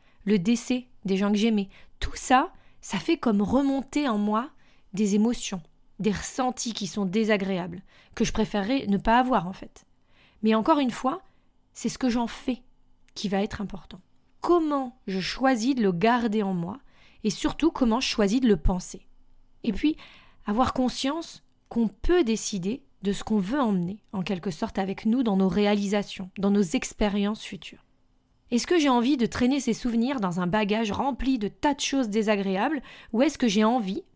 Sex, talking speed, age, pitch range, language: female, 185 wpm, 20-39, 200-255 Hz, French